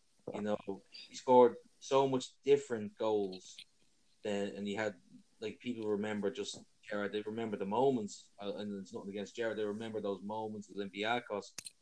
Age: 20-39